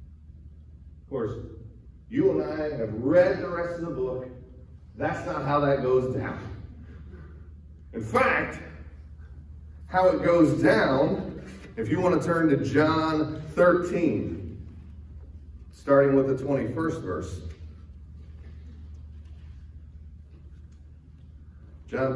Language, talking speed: English, 105 wpm